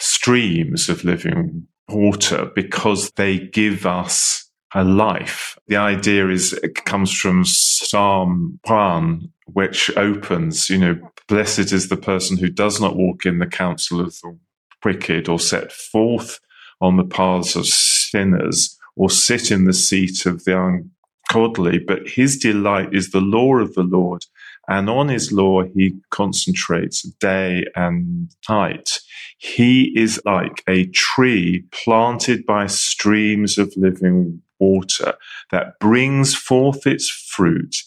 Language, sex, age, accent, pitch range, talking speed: English, male, 30-49, British, 95-110 Hz, 135 wpm